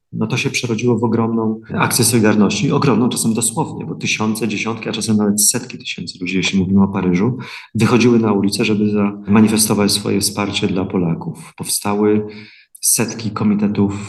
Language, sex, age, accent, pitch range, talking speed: Polish, male, 30-49, native, 100-115 Hz, 155 wpm